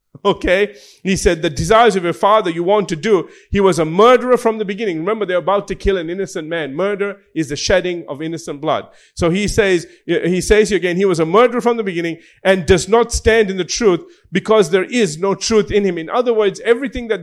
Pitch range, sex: 185-245 Hz, male